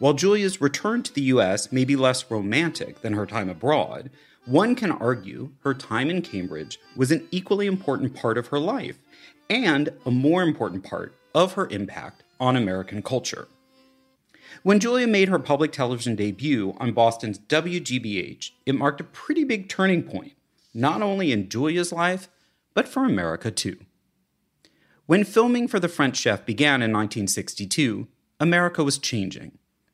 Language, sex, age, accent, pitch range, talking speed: English, male, 40-59, American, 115-175 Hz, 155 wpm